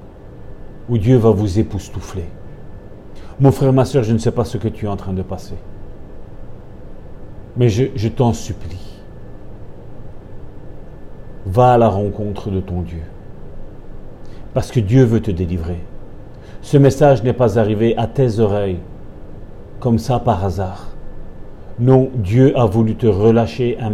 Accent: French